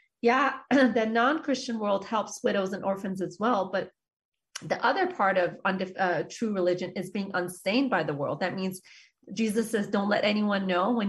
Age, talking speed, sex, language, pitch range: 30-49, 185 wpm, female, English, 185-230 Hz